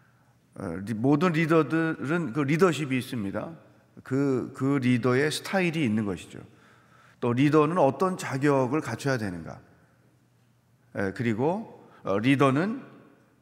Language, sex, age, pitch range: Korean, male, 40-59, 120-155 Hz